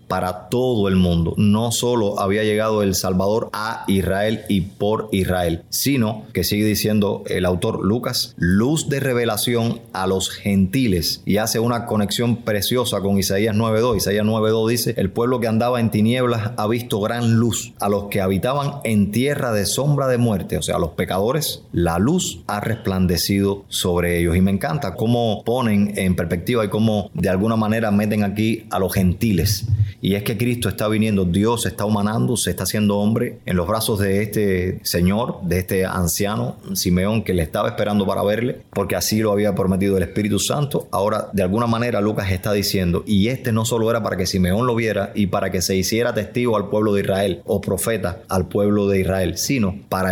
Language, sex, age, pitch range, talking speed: Spanish, male, 30-49, 95-115 Hz, 190 wpm